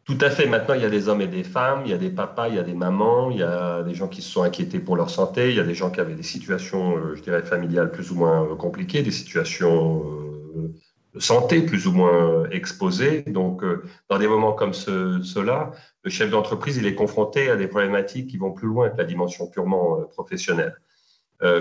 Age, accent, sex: 40-59, French, male